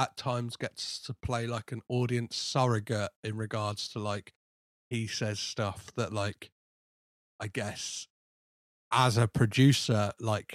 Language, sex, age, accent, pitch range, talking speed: English, male, 30-49, British, 105-135 Hz, 135 wpm